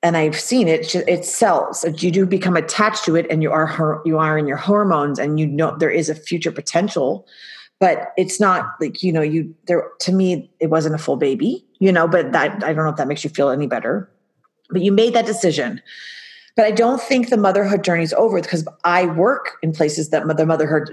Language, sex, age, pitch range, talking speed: English, female, 30-49, 160-205 Hz, 230 wpm